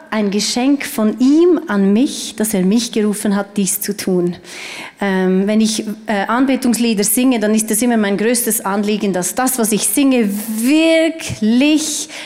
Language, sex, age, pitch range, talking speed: German, female, 30-49, 205-245 Hz, 160 wpm